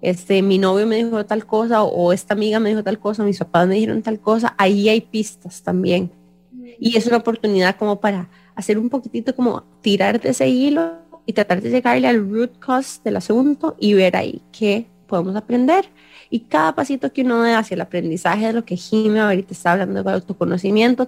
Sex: female